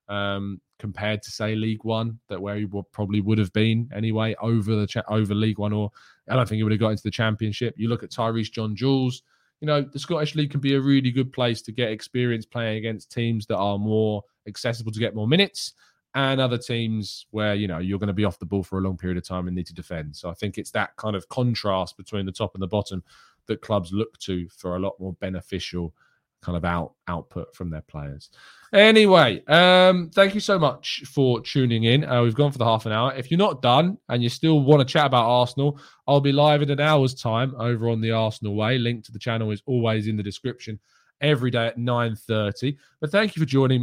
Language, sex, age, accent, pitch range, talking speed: English, male, 20-39, British, 105-135 Hz, 240 wpm